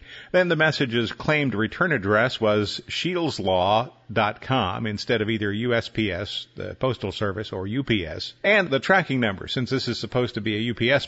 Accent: American